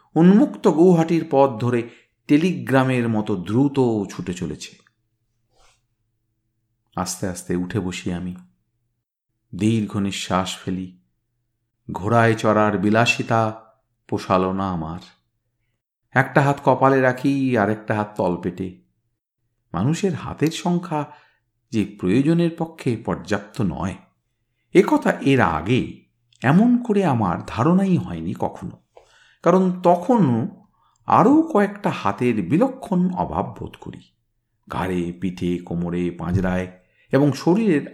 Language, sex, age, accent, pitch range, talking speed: Bengali, male, 50-69, native, 105-145 Hz, 100 wpm